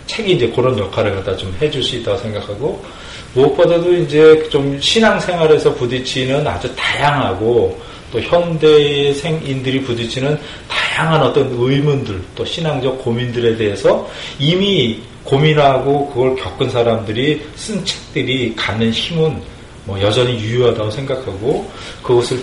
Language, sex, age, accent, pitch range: Korean, male, 40-59, native, 110-155 Hz